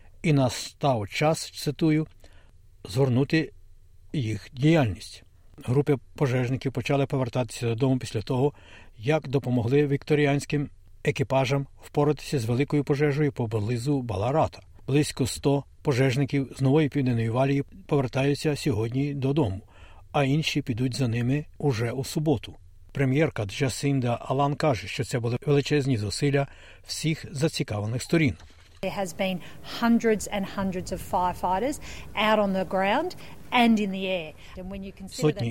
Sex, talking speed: male, 95 wpm